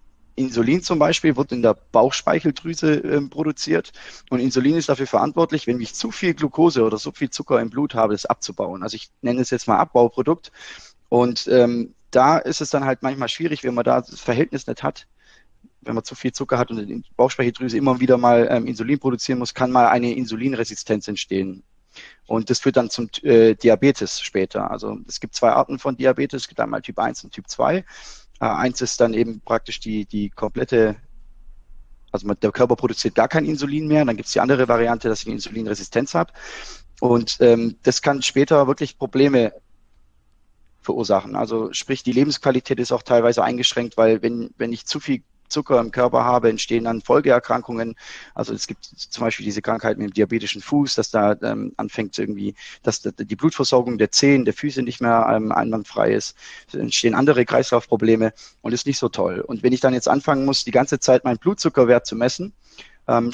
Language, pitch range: German, 115-135 Hz